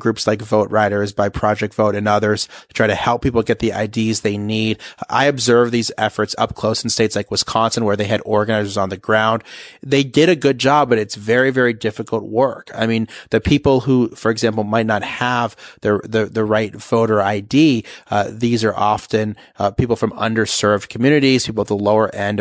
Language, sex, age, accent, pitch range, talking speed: English, male, 30-49, American, 105-125 Hz, 205 wpm